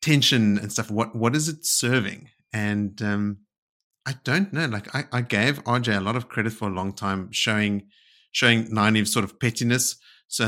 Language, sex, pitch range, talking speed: English, male, 100-120 Hz, 190 wpm